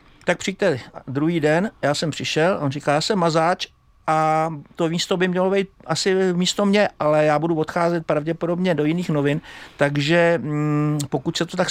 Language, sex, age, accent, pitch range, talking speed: Czech, male, 60-79, native, 125-160 Hz, 180 wpm